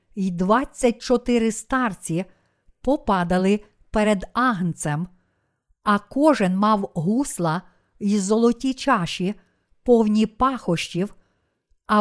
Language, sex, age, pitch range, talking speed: Ukrainian, female, 50-69, 185-240 Hz, 80 wpm